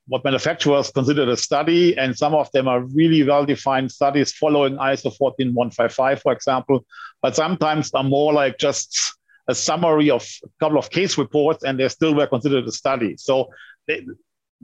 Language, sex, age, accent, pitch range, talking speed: English, male, 50-69, German, 130-155 Hz, 170 wpm